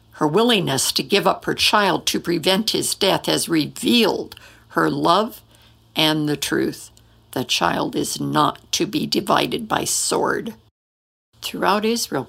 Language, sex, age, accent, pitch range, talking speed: English, female, 60-79, American, 130-220 Hz, 140 wpm